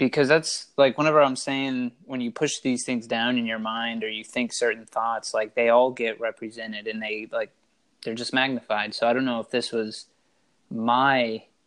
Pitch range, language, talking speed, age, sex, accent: 110-125 Hz, English, 200 wpm, 20-39, male, American